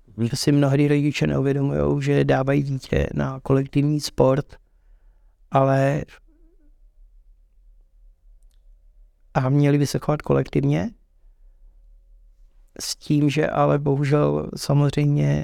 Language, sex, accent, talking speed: Czech, male, native, 95 wpm